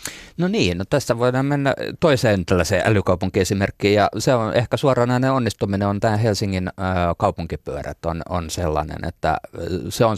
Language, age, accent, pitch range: Finnish, 30-49, native, 90-105 Hz